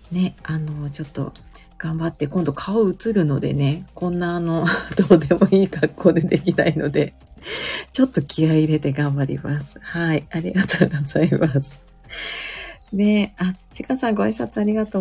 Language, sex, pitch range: Japanese, female, 150-195 Hz